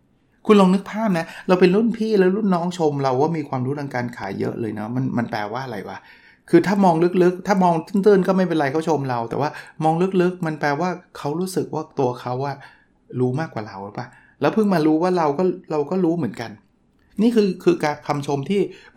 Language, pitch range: Thai, 130-175 Hz